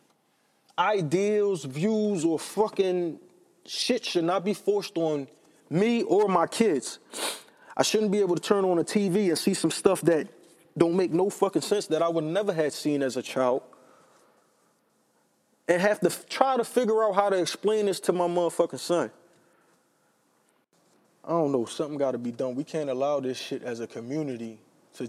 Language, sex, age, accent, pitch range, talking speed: English, male, 20-39, American, 145-205 Hz, 180 wpm